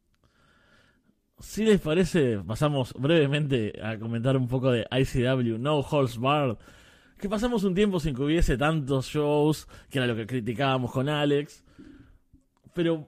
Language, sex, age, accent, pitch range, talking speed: Spanish, male, 20-39, Argentinian, 120-160 Hz, 145 wpm